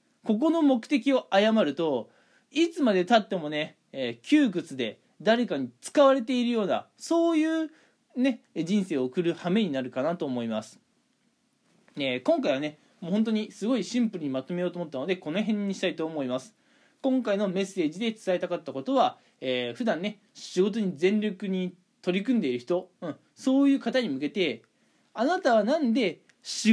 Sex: male